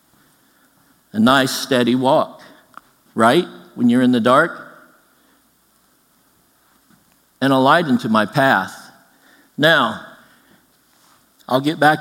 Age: 50-69